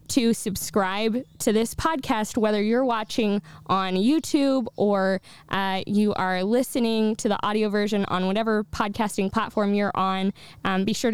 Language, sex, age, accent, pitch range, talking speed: English, female, 10-29, American, 195-230 Hz, 150 wpm